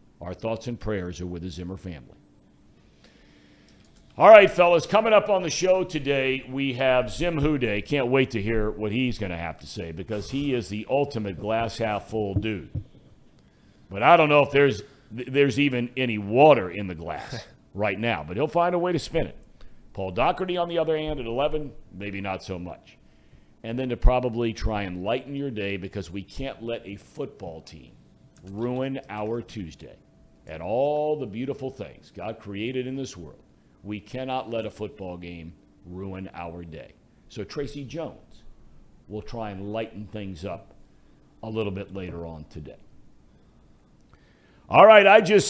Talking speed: 175 wpm